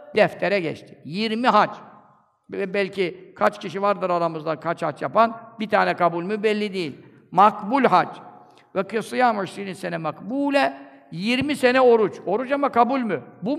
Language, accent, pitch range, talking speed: Turkish, native, 175-235 Hz, 145 wpm